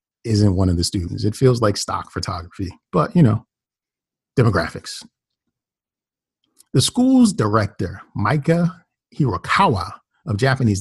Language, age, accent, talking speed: English, 40-59, American, 115 wpm